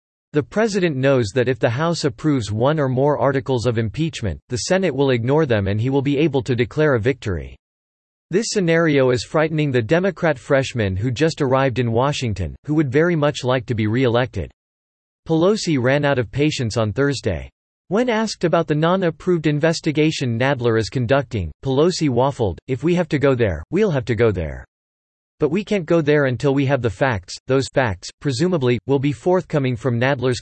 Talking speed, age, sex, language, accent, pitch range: 185 wpm, 40-59, male, English, American, 120-150 Hz